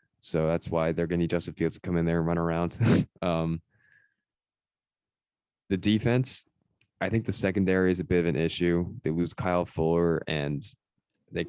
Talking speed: 185 wpm